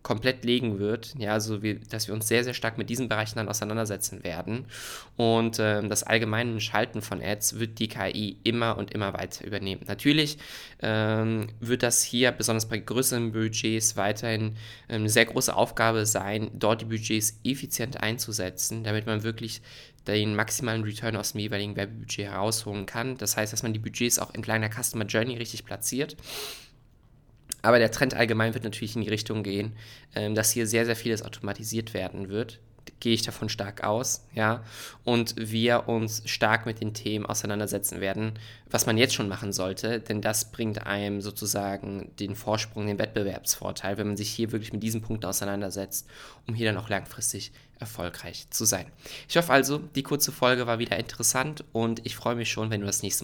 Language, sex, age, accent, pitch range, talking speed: German, male, 20-39, German, 105-115 Hz, 185 wpm